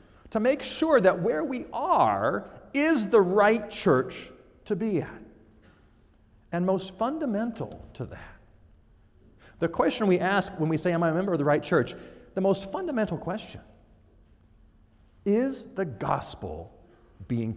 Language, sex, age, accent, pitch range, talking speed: English, male, 50-69, American, 110-185 Hz, 145 wpm